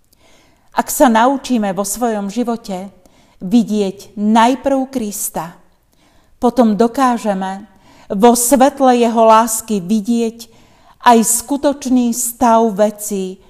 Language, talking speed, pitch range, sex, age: Slovak, 90 wpm, 205-255 Hz, female, 40-59